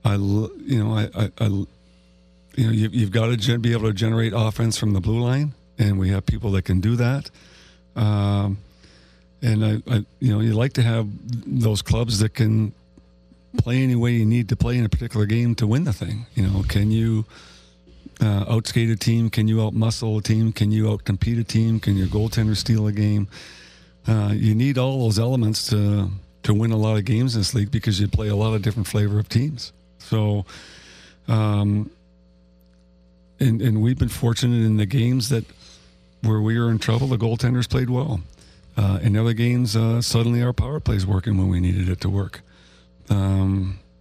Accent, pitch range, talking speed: American, 95-115 Hz, 200 wpm